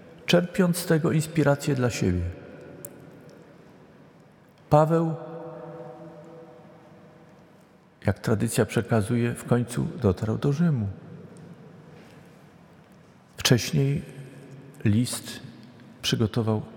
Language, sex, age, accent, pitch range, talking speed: Polish, male, 50-69, native, 105-155 Hz, 65 wpm